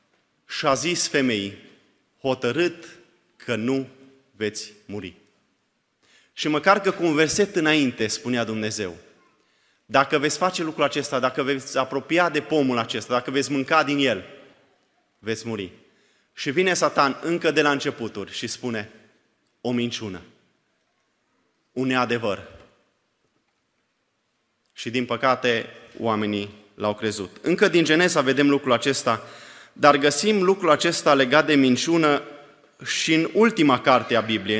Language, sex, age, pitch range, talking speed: Romanian, male, 30-49, 125-160 Hz, 130 wpm